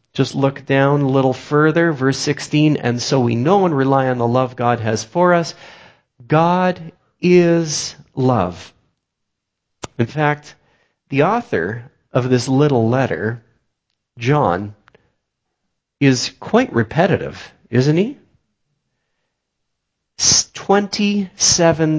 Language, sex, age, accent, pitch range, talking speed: English, male, 40-59, American, 115-165 Hz, 105 wpm